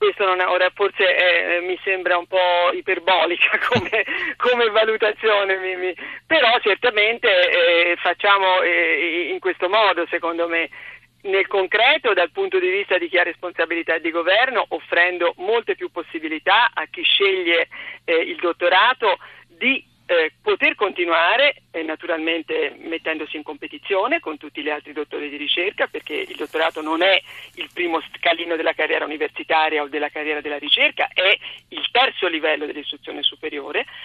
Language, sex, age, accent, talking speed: Italian, female, 50-69, native, 155 wpm